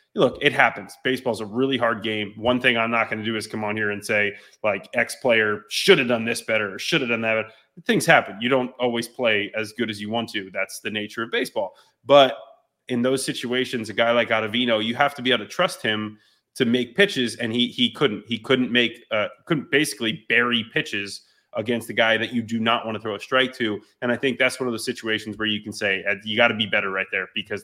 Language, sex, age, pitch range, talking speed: English, male, 30-49, 110-125 Hz, 250 wpm